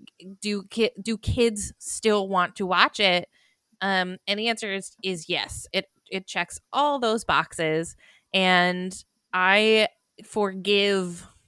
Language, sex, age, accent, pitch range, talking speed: English, female, 20-39, American, 180-215 Hz, 130 wpm